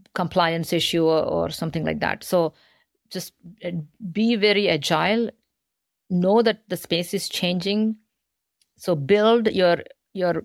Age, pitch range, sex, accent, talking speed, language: 50-69, 160-185 Hz, female, Indian, 120 wpm, English